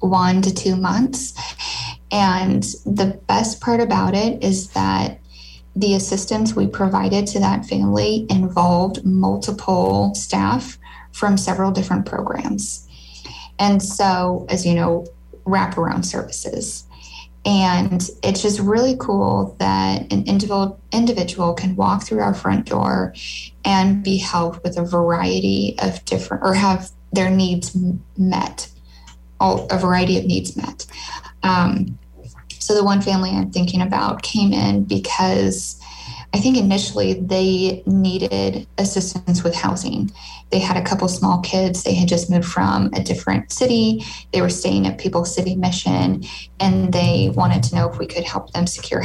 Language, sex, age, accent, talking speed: English, female, 10-29, American, 145 wpm